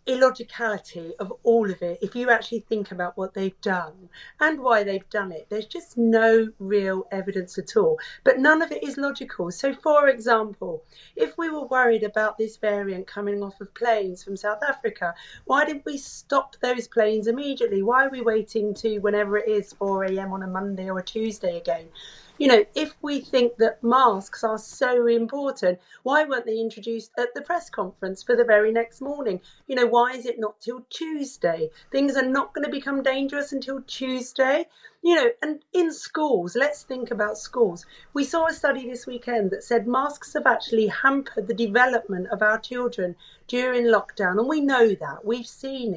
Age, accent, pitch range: 40-59, British, 205-270 Hz